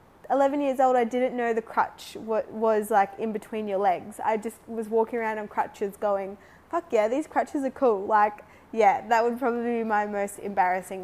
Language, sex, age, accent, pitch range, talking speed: English, female, 20-39, Australian, 200-230 Hz, 200 wpm